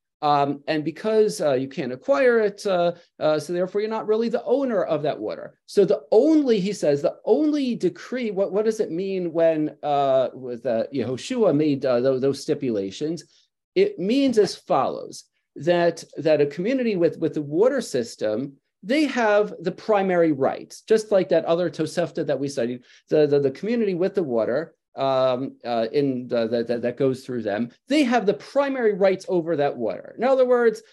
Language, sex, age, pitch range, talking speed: English, male, 40-59, 150-225 Hz, 190 wpm